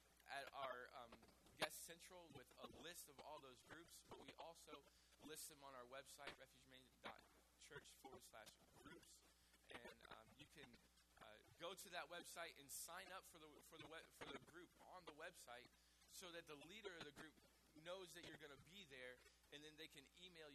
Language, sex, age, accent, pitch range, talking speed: English, male, 20-39, American, 125-180 Hz, 195 wpm